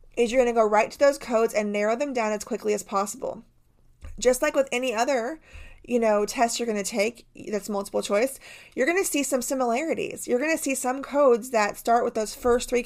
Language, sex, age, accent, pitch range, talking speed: English, female, 30-49, American, 210-260 Hz, 235 wpm